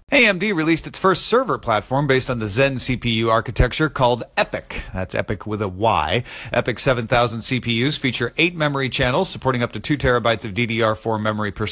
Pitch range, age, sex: 105-145 Hz, 40-59, male